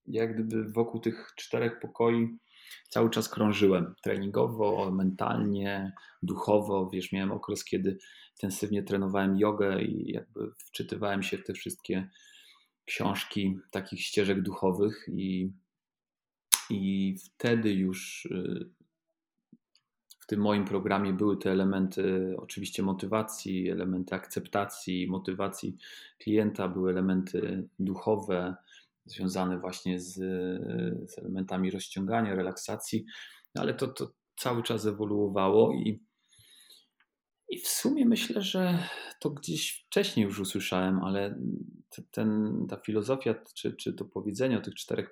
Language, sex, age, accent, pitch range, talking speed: Polish, male, 30-49, native, 95-110 Hz, 110 wpm